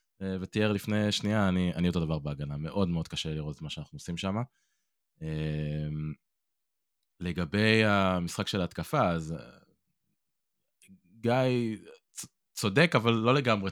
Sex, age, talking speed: male, 20-39, 120 wpm